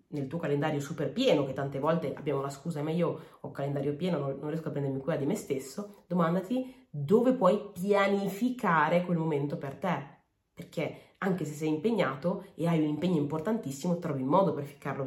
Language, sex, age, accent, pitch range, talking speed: Italian, female, 30-49, native, 140-165 Hz, 195 wpm